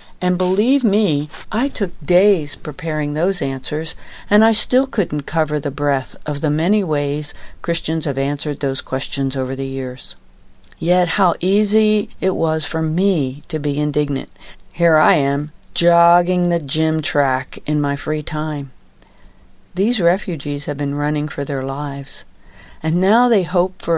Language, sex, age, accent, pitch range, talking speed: English, female, 50-69, American, 145-180 Hz, 155 wpm